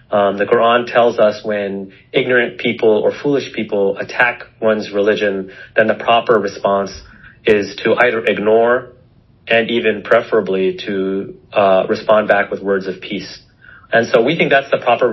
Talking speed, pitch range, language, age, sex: 160 wpm, 100-125 Hz, English, 30-49, male